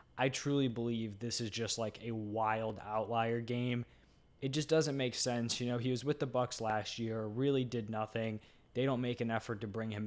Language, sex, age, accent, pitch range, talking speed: English, male, 20-39, American, 115-135 Hz, 215 wpm